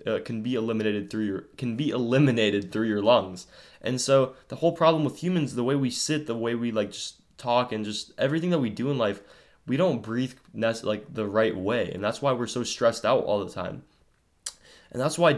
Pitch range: 100-125 Hz